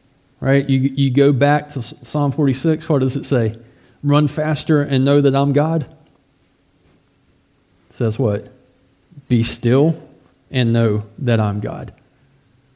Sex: male